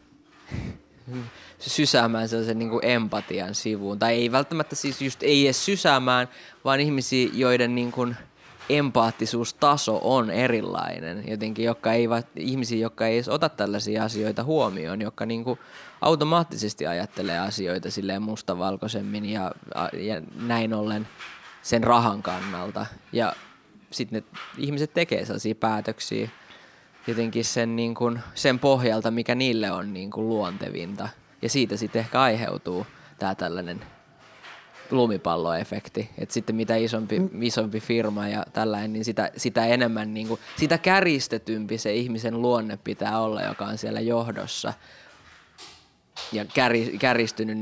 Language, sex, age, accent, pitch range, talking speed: Finnish, male, 20-39, native, 110-125 Hz, 125 wpm